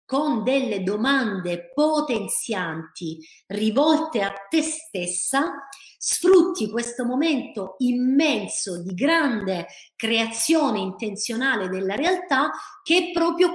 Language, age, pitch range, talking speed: Italian, 30-49, 195-295 Hz, 95 wpm